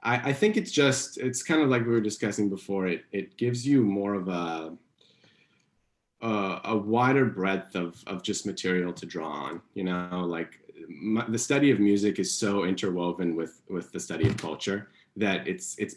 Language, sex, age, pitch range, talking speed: English, male, 30-49, 85-105 Hz, 190 wpm